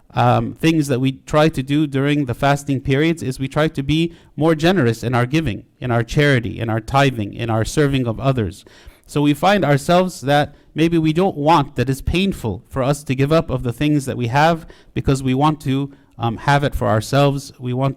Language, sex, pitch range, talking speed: English, male, 130-155 Hz, 220 wpm